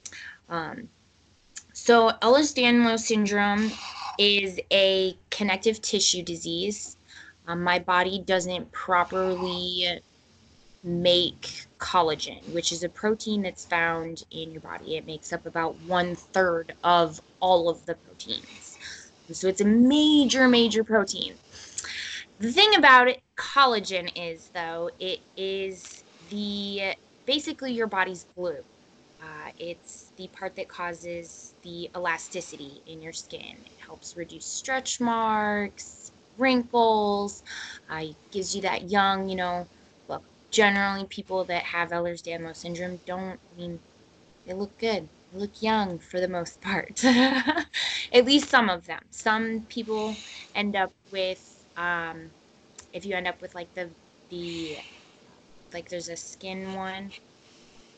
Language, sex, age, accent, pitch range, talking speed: English, female, 20-39, American, 175-220 Hz, 130 wpm